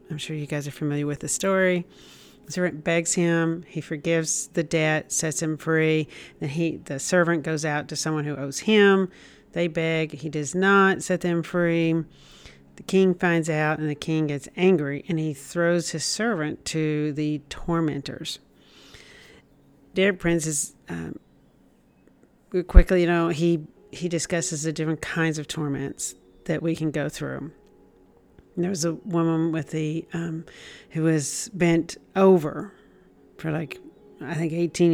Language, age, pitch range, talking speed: English, 50-69, 150-170 Hz, 160 wpm